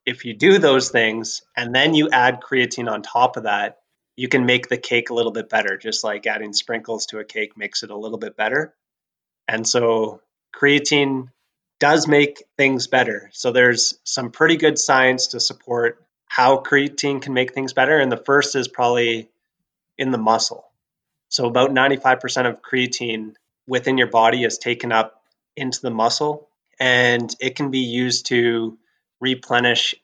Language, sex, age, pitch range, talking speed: English, male, 20-39, 115-130 Hz, 170 wpm